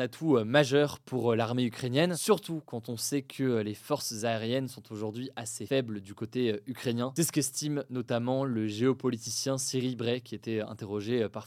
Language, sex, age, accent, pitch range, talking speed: French, male, 20-39, French, 115-145 Hz, 165 wpm